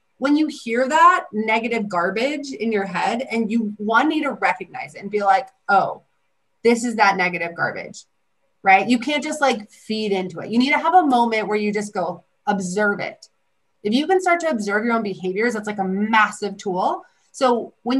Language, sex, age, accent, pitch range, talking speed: English, female, 30-49, American, 200-270 Hz, 205 wpm